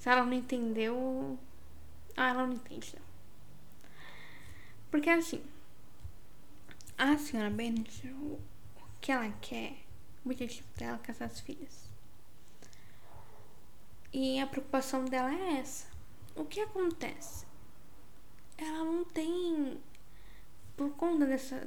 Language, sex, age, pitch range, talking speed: Portuguese, female, 10-29, 235-290 Hz, 110 wpm